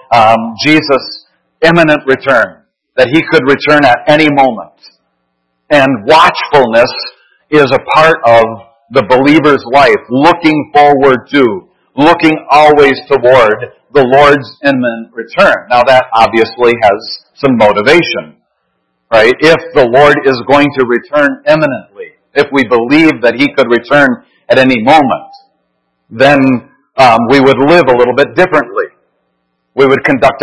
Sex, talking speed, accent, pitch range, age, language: male, 130 wpm, American, 115-155 Hz, 50-69, English